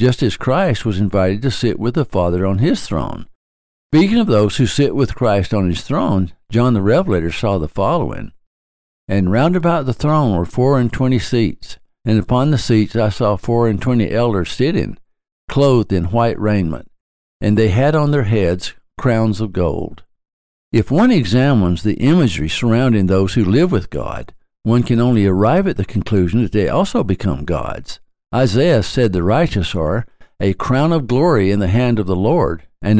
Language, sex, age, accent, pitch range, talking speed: English, male, 60-79, American, 90-125 Hz, 185 wpm